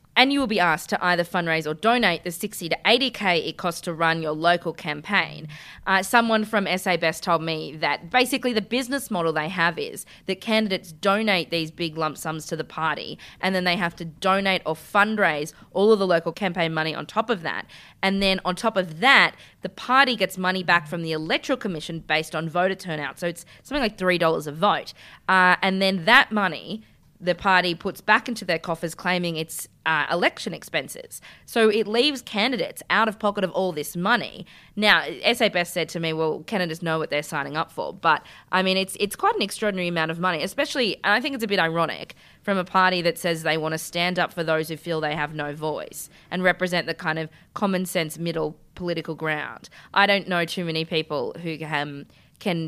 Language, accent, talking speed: English, Australian, 215 wpm